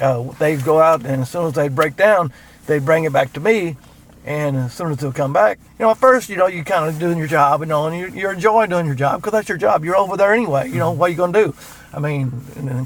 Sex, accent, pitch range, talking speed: male, American, 125-155 Hz, 295 wpm